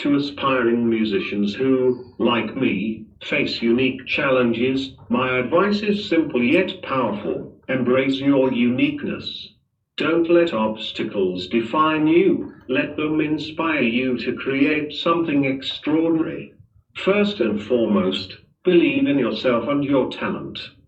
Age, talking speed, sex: 50-69, 115 wpm, male